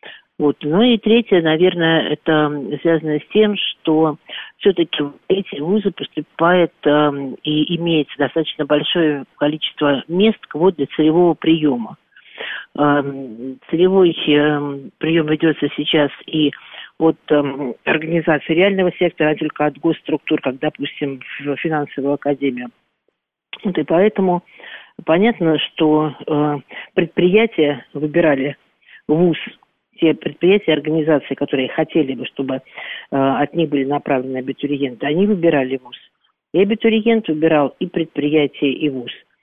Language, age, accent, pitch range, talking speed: Russian, 50-69, native, 145-170 Hz, 115 wpm